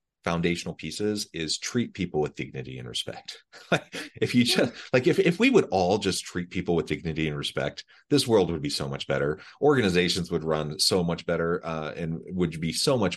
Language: English